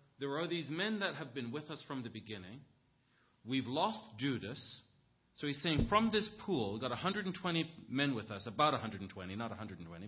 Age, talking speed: 40-59, 185 wpm